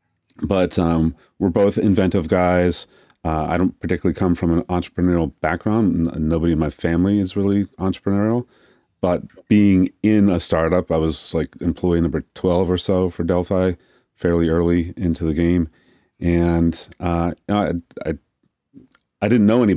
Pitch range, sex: 85-95 Hz, male